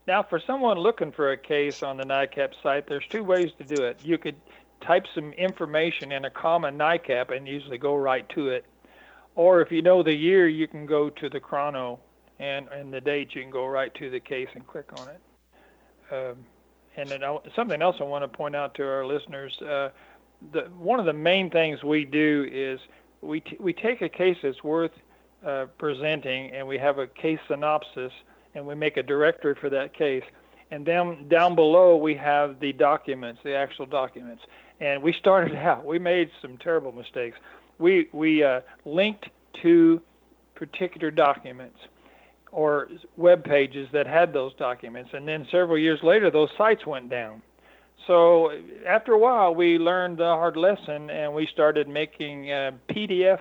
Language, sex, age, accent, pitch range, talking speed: English, male, 50-69, American, 140-175 Hz, 185 wpm